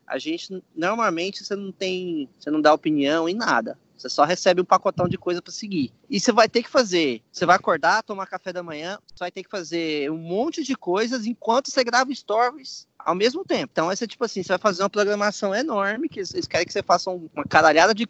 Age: 20-39